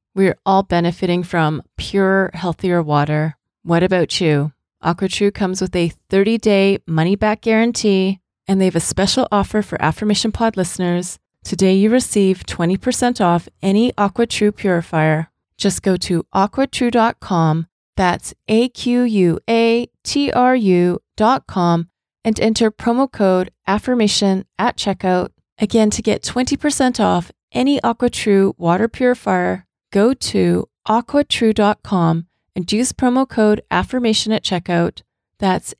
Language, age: English, 30-49